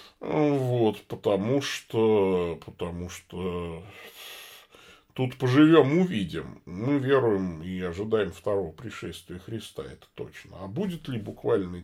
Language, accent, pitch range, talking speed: Russian, native, 90-135 Hz, 105 wpm